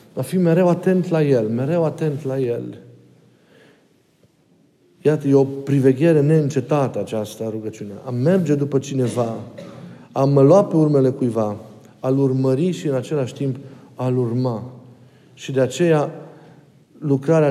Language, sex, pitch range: Romanian, male, 120-155 Hz